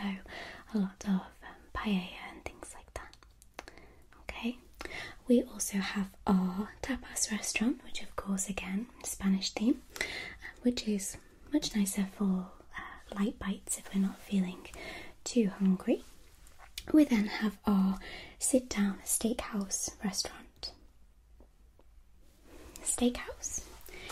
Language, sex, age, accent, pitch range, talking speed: English, female, 20-39, British, 195-255 Hz, 115 wpm